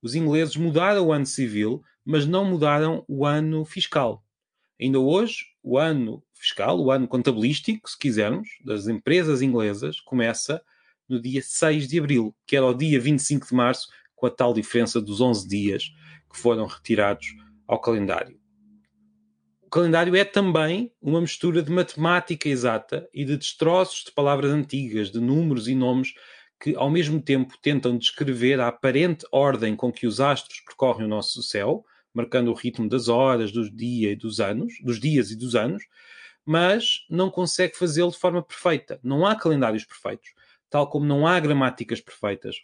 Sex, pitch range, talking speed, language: male, 120-160 Hz, 160 wpm, Portuguese